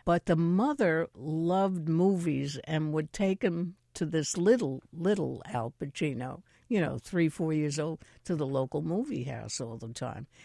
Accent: American